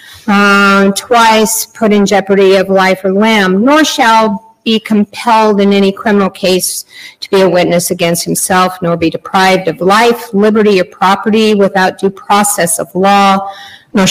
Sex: female